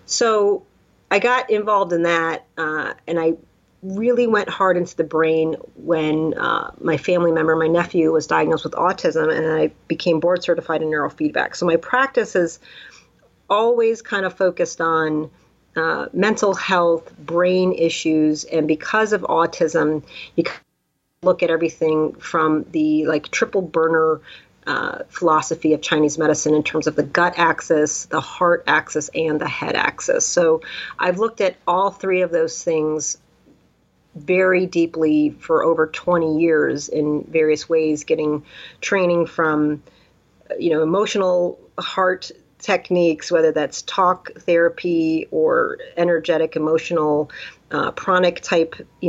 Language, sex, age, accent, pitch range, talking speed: English, female, 40-59, American, 155-185 Hz, 145 wpm